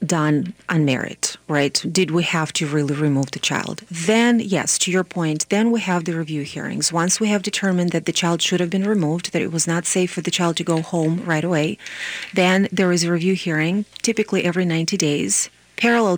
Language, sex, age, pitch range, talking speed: English, female, 30-49, 155-185 Hz, 215 wpm